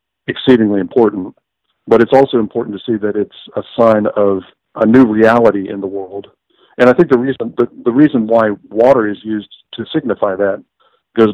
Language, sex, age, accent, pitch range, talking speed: English, male, 50-69, American, 100-115 Hz, 185 wpm